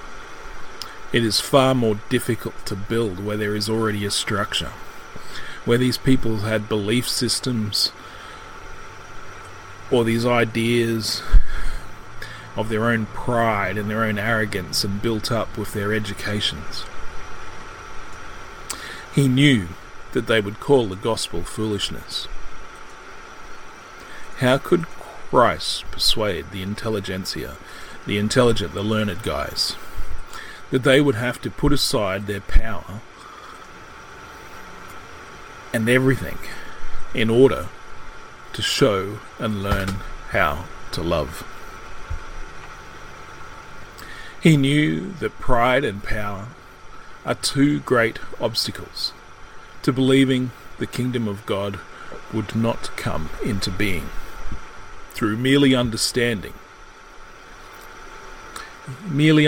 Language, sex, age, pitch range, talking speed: English, male, 30-49, 105-130 Hz, 100 wpm